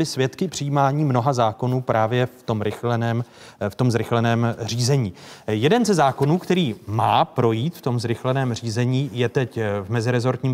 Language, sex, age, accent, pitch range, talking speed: Czech, male, 30-49, native, 115-145 Hz, 140 wpm